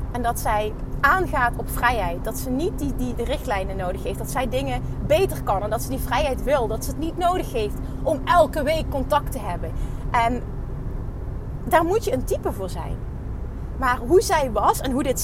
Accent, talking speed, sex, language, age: Dutch, 210 wpm, female, Dutch, 30-49